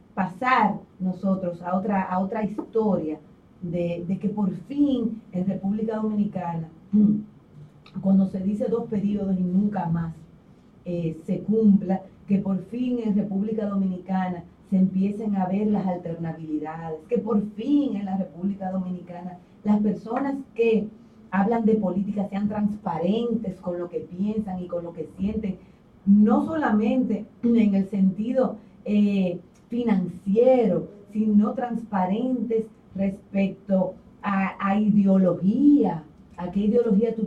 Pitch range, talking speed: 185-220 Hz, 125 wpm